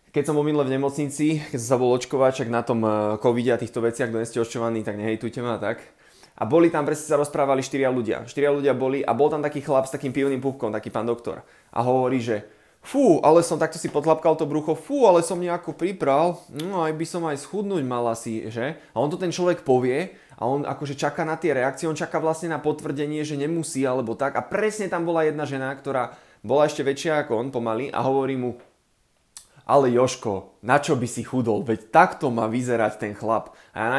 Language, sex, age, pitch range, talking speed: Slovak, male, 20-39, 125-155 Hz, 220 wpm